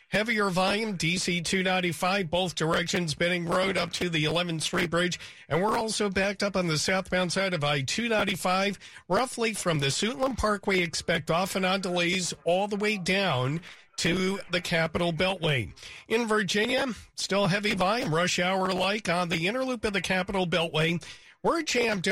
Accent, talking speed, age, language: American, 165 wpm, 50-69, English